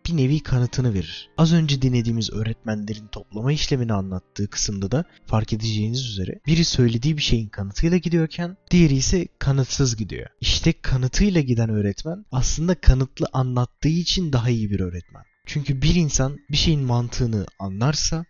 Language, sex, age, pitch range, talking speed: Turkish, male, 30-49, 110-150 Hz, 150 wpm